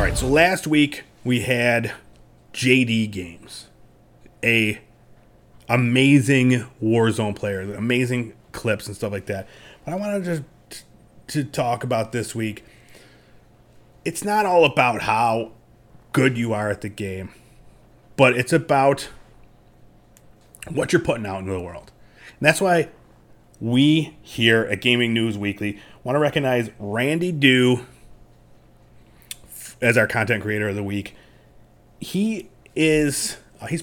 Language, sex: English, male